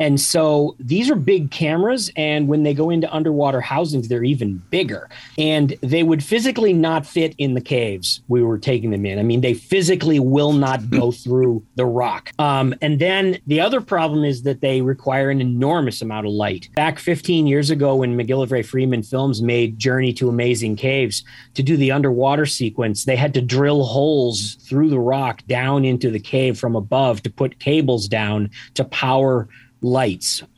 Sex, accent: male, American